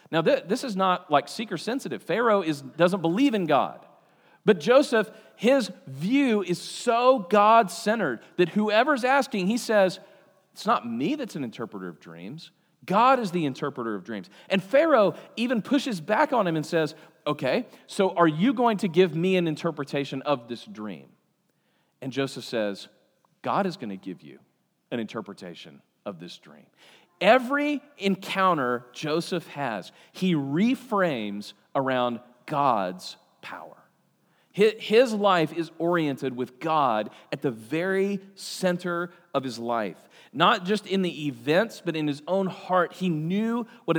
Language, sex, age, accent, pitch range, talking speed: English, male, 40-59, American, 145-210 Hz, 145 wpm